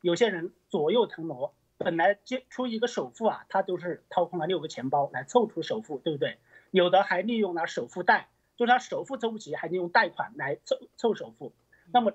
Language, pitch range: Chinese, 165-225 Hz